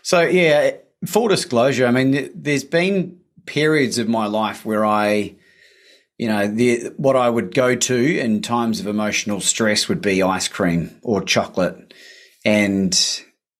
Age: 30-49